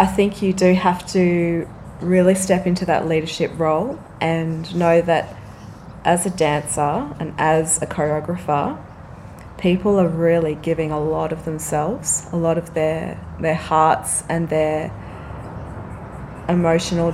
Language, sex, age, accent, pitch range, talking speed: English, female, 20-39, Australian, 155-175 Hz, 135 wpm